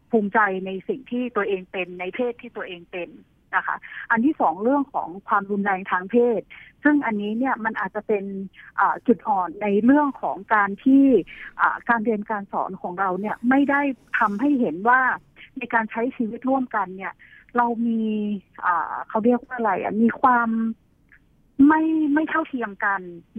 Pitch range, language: 195-250 Hz, Thai